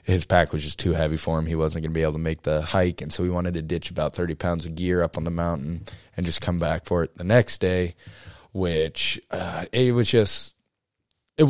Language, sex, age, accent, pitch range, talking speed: English, male, 20-39, American, 85-110 Hz, 250 wpm